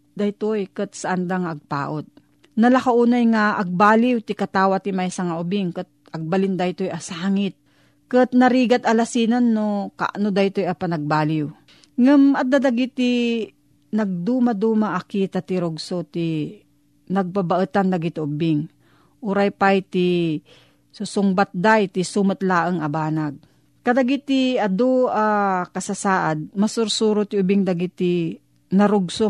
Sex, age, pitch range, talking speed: female, 40-59, 180-220 Hz, 115 wpm